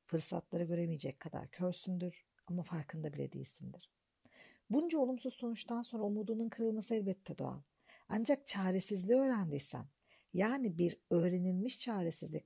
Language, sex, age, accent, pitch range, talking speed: Turkish, female, 50-69, native, 175-230 Hz, 110 wpm